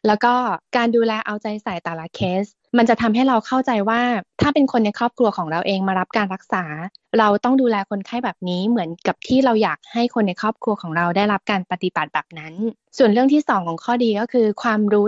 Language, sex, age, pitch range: Thai, female, 20-39, 195-235 Hz